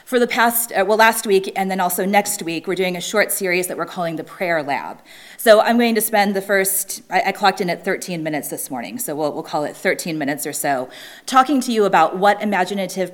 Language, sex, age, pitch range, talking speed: English, female, 30-49, 175-230 Hz, 245 wpm